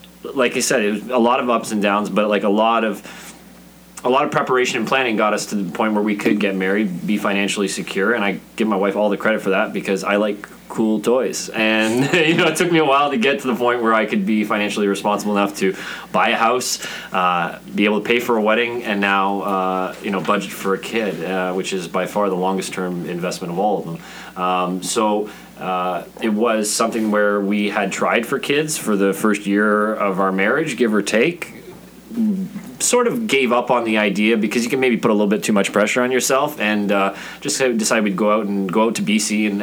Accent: American